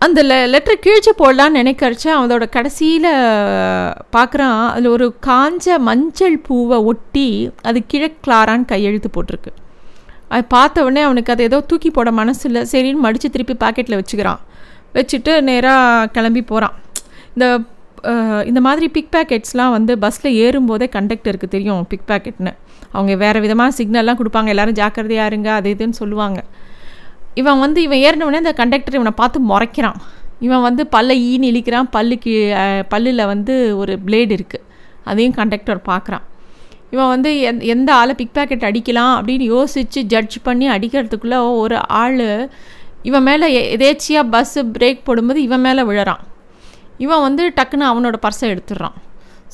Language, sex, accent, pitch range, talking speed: Tamil, female, native, 220-270 Hz, 135 wpm